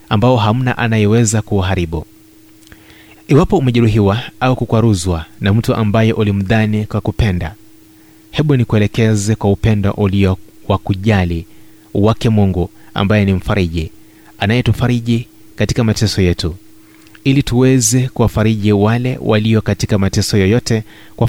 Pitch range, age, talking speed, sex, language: 105-120 Hz, 30-49, 110 wpm, male, Swahili